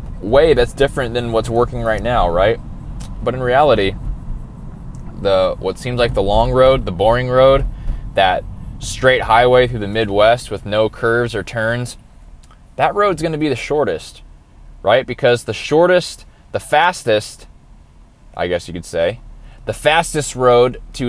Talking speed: 155 wpm